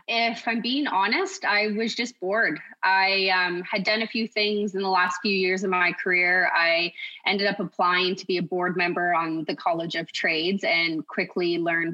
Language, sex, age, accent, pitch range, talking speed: English, female, 20-39, American, 180-205 Hz, 200 wpm